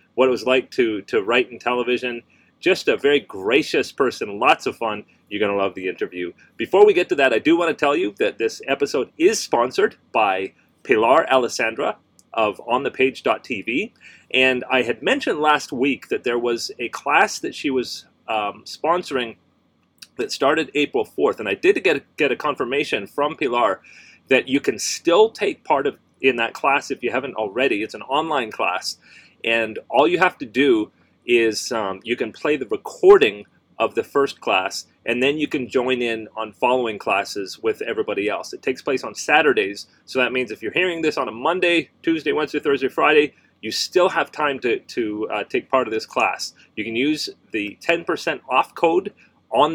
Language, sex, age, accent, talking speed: English, male, 30-49, American, 190 wpm